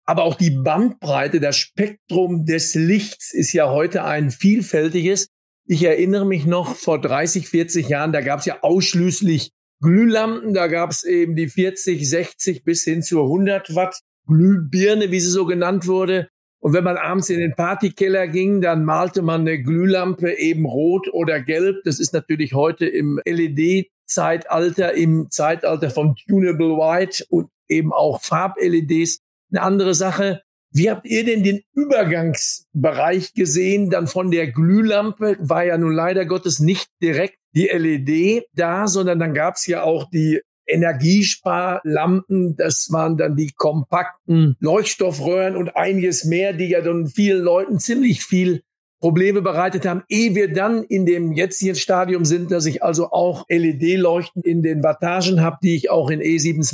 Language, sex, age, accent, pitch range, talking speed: German, male, 50-69, German, 160-190 Hz, 160 wpm